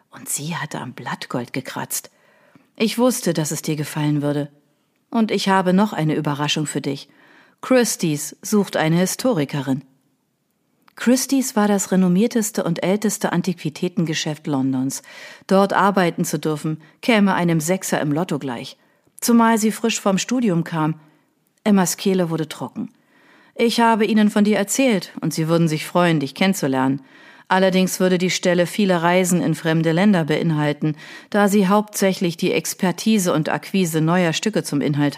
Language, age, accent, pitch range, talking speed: German, 40-59, German, 155-210 Hz, 150 wpm